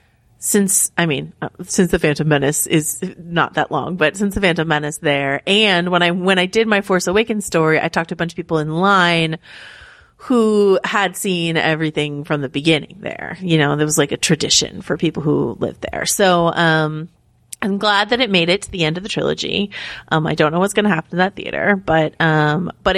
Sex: female